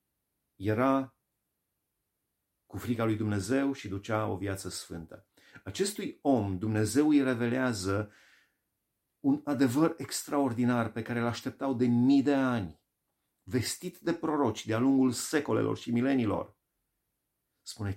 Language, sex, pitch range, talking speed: Romanian, male, 100-135 Hz, 115 wpm